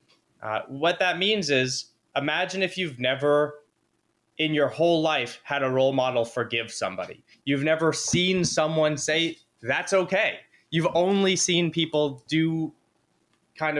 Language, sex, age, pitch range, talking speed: English, male, 20-39, 125-160 Hz, 140 wpm